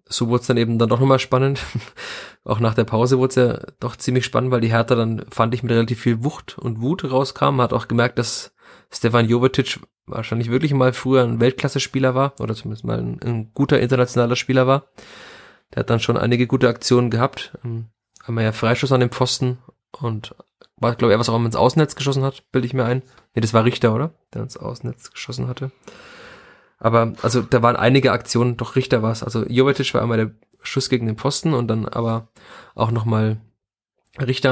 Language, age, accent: German, 20-39, German